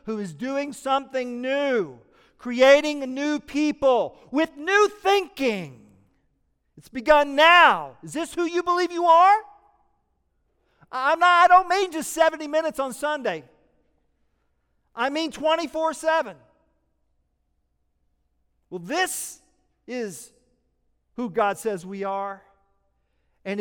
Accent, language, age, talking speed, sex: American, English, 50-69, 110 wpm, male